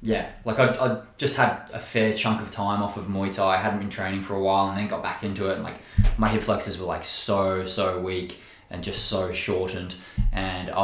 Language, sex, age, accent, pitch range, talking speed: English, male, 20-39, Australian, 95-110 Hz, 240 wpm